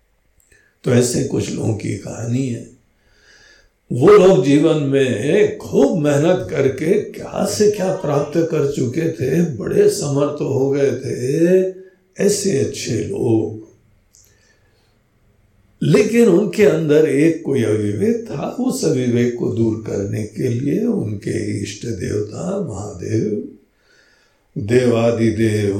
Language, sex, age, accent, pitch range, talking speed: Hindi, male, 60-79, native, 105-155 Hz, 110 wpm